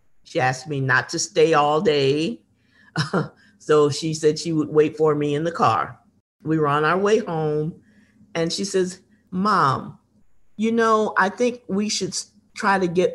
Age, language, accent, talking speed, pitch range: 50-69, English, American, 175 wpm, 150-205 Hz